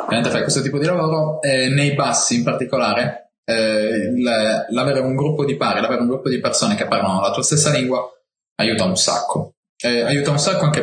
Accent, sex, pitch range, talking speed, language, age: native, male, 110-140 Hz, 195 wpm, Italian, 20-39